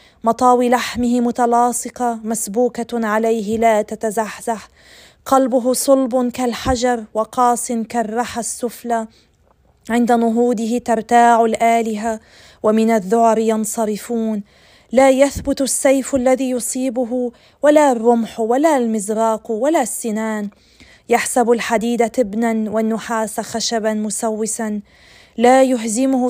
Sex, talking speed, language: female, 90 wpm, Arabic